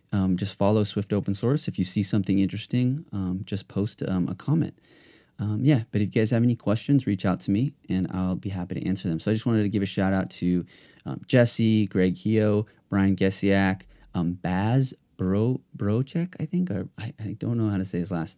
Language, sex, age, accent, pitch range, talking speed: English, male, 30-49, American, 90-115 Hz, 220 wpm